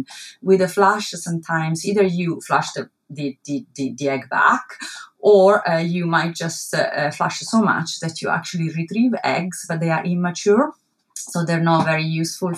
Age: 30-49